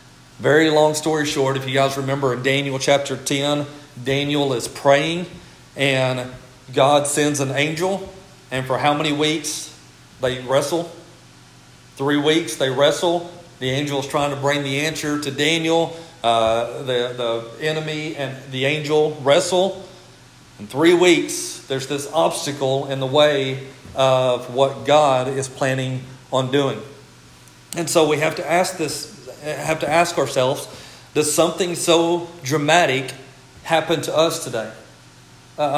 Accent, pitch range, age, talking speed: American, 130-155 Hz, 40-59, 145 wpm